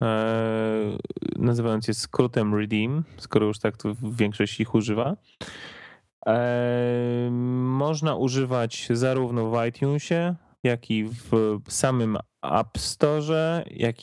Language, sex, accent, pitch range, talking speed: Polish, male, native, 110-130 Hz, 95 wpm